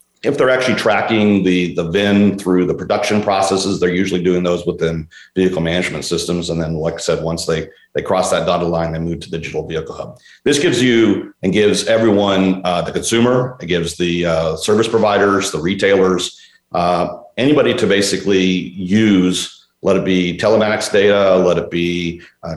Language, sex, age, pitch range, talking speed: English, male, 40-59, 85-100 Hz, 180 wpm